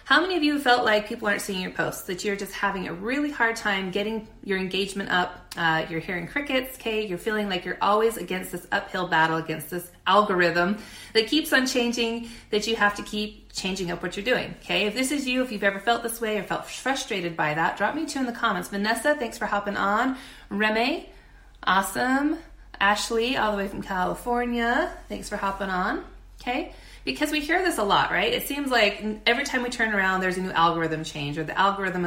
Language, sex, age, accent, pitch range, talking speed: English, female, 30-49, American, 180-235 Hz, 220 wpm